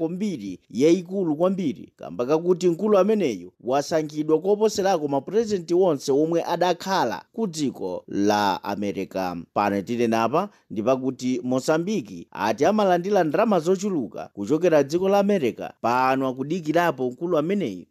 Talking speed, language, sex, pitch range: 125 wpm, English, male, 135-220 Hz